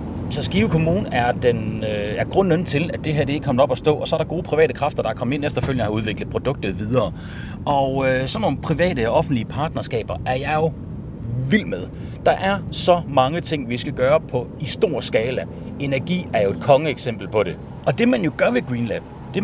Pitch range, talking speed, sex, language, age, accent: 125-165 Hz, 225 wpm, male, Danish, 40-59, native